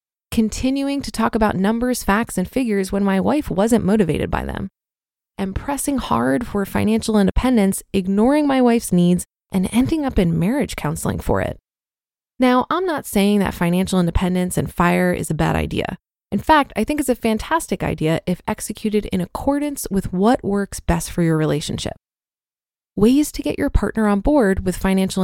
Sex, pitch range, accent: female, 185-255 Hz, American